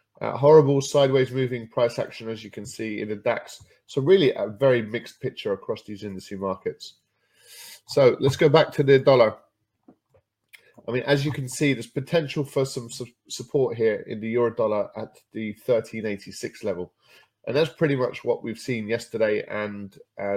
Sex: male